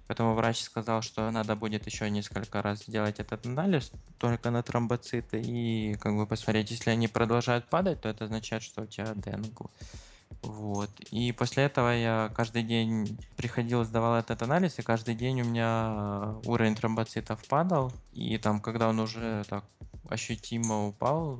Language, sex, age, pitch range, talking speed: Russian, male, 20-39, 105-115 Hz, 160 wpm